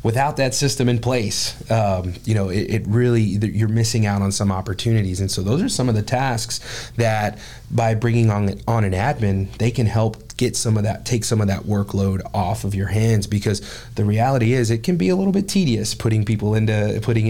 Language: English